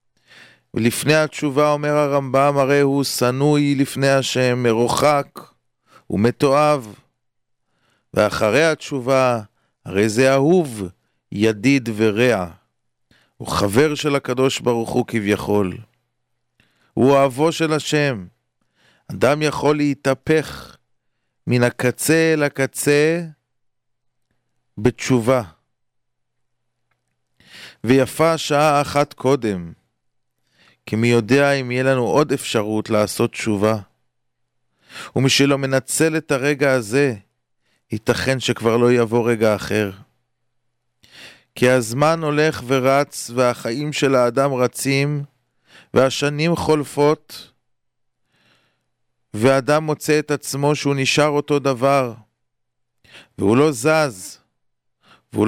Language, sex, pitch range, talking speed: English, male, 120-145 Hz, 85 wpm